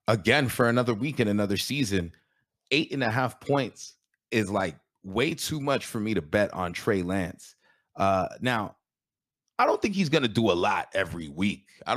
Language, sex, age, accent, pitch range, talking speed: English, male, 30-49, American, 90-120 Hz, 185 wpm